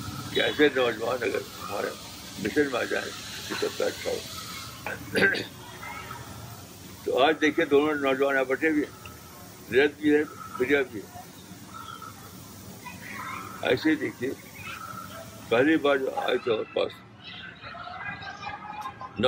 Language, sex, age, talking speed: Urdu, male, 60-79, 105 wpm